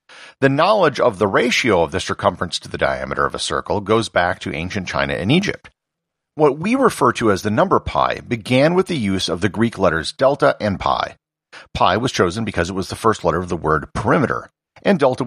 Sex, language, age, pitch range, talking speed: male, English, 50-69, 90-145 Hz, 215 wpm